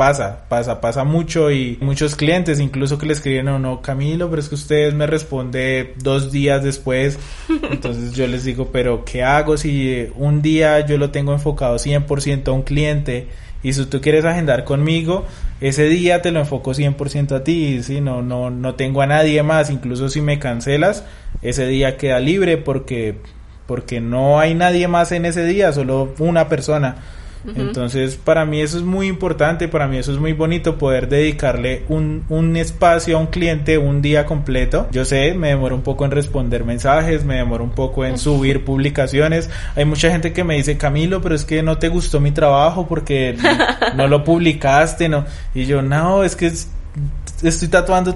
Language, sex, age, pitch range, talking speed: Spanish, male, 20-39, 130-160 Hz, 190 wpm